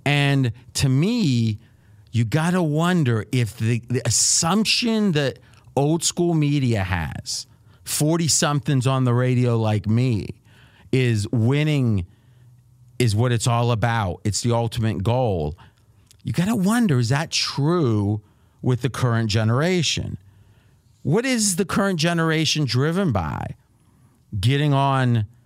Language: English